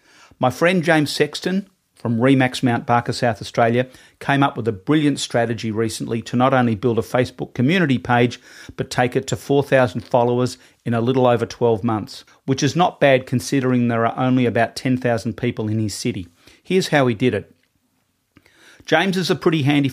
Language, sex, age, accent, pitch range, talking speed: English, male, 40-59, Australian, 115-135 Hz, 185 wpm